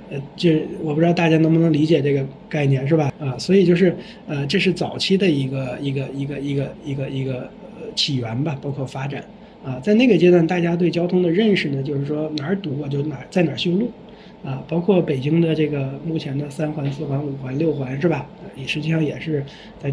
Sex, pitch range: male, 140-180 Hz